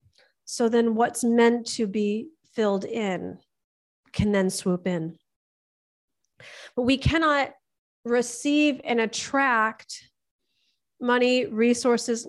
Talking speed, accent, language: 100 wpm, American, English